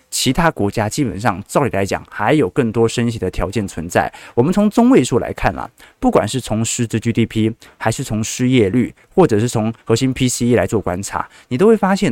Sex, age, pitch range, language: male, 20-39, 110-145 Hz, Chinese